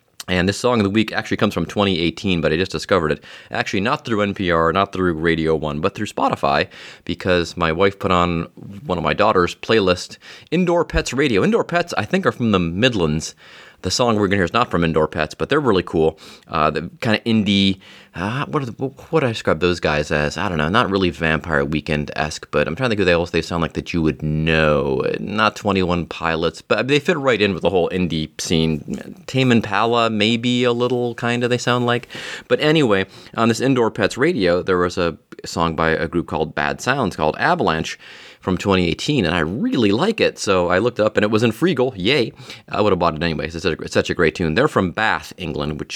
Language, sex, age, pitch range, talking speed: English, male, 30-49, 80-115 Hz, 230 wpm